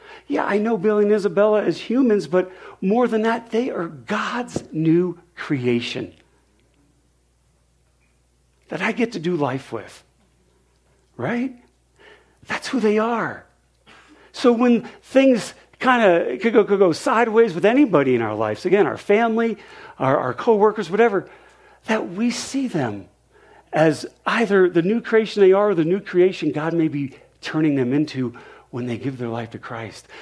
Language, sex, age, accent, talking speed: English, male, 50-69, American, 155 wpm